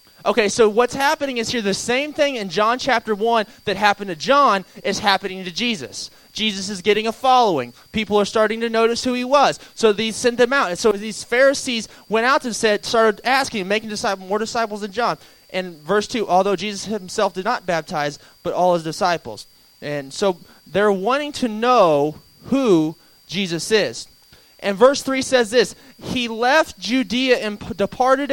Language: English